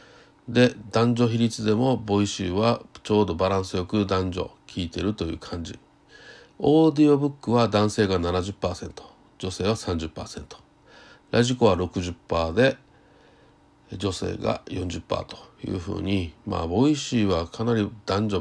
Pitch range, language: 90-115 Hz, Japanese